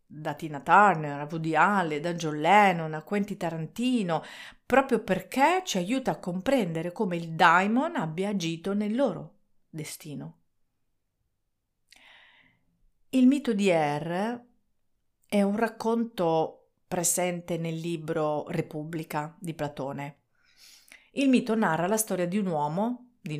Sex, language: female, Italian